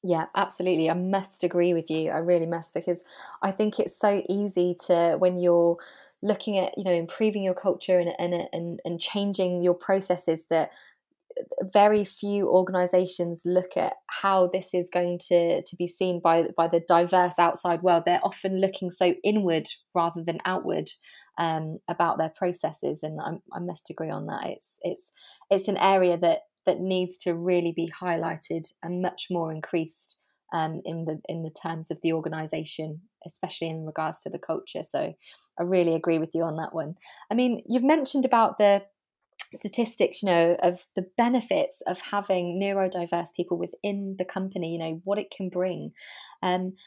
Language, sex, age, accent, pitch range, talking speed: English, female, 20-39, British, 170-200 Hz, 175 wpm